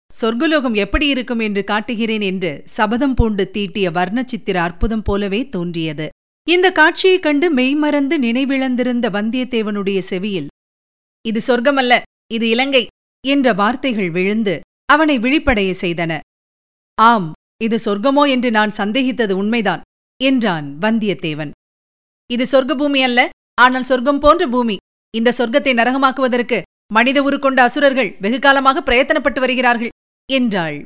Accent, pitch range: native, 200-275 Hz